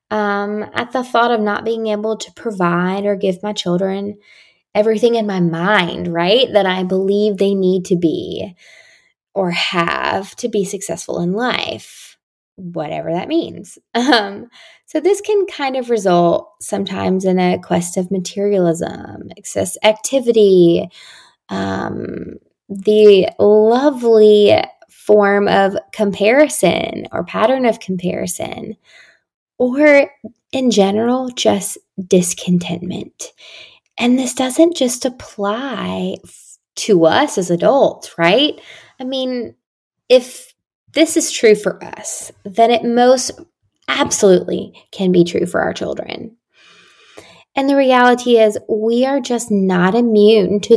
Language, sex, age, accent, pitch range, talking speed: English, female, 10-29, American, 190-245 Hz, 125 wpm